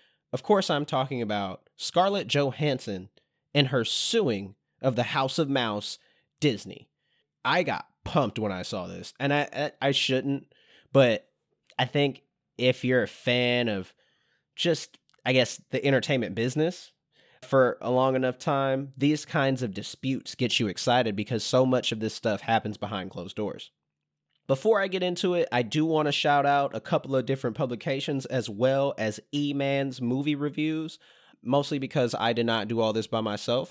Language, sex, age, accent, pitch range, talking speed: English, male, 20-39, American, 115-145 Hz, 170 wpm